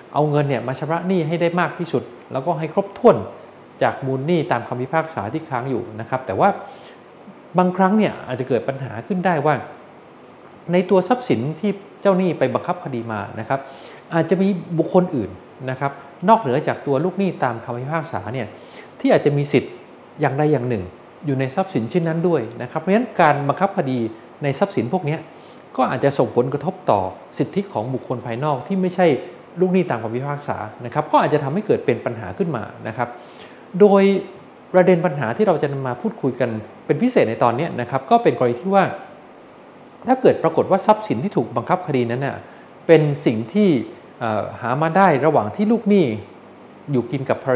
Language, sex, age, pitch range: Thai, male, 20-39, 120-185 Hz